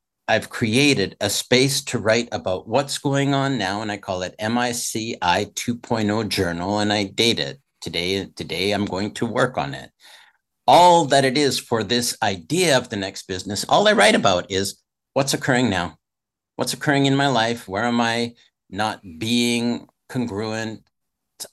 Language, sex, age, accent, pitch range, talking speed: English, male, 50-69, American, 105-135 Hz, 170 wpm